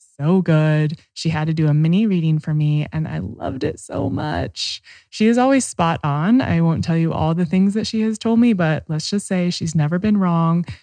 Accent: American